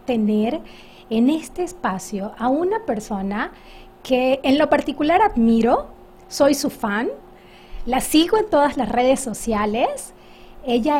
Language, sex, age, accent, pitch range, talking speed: Spanish, female, 40-59, American, 220-285 Hz, 125 wpm